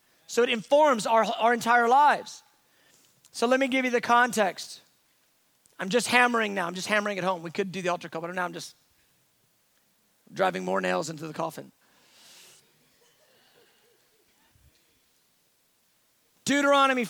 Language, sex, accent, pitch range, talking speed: English, male, American, 220-275 Hz, 140 wpm